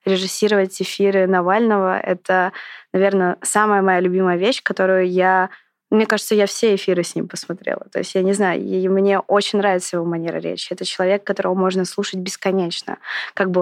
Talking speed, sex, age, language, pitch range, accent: 170 wpm, female, 20-39, Russian, 185-205 Hz, native